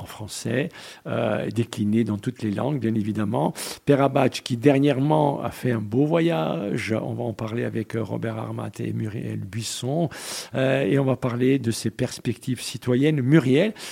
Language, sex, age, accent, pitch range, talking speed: French, male, 60-79, French, 120-170 Hz, 170 wpm